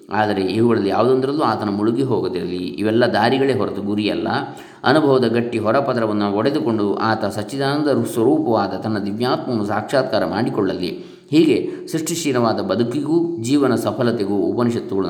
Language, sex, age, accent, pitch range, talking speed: Kannada, male, 20-39, native, 110-145 Hz, 105 wpm